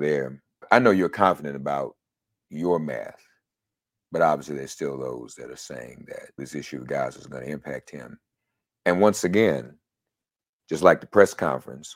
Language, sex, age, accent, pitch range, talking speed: English, male, 50-69, American, 75-105 Hz, 170 wpm